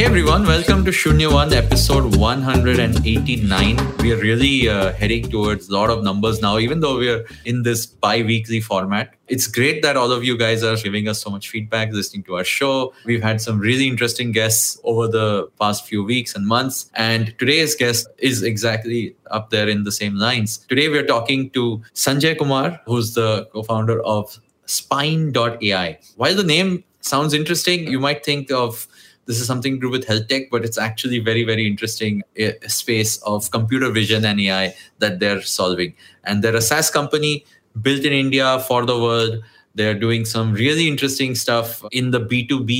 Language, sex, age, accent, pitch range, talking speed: English, male, 20-39, Indian, 110-130 Hz, 185 wpm